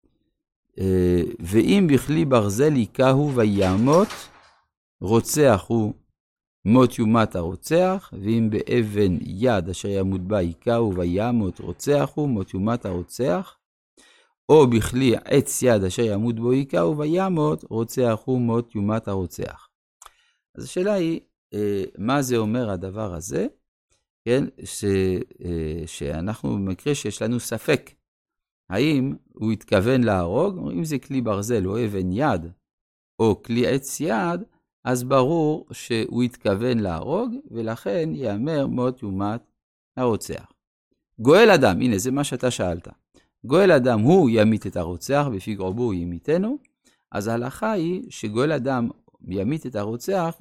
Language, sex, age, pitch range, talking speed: Hebrew, male, 50-69, 95-135 Hz, 125 wpm